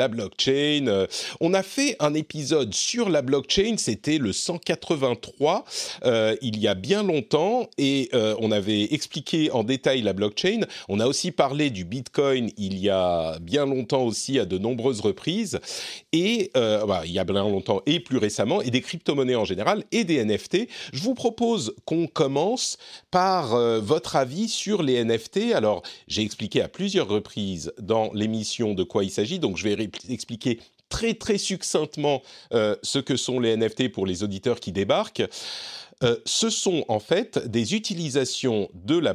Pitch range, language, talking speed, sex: 110-180 Hz, French, 175 wpm, male